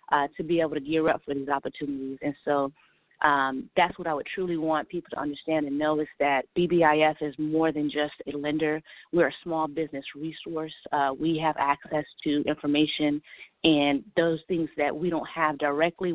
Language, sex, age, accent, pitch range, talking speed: English, female, 30-49, American, 145-165 Hz, 190 wpm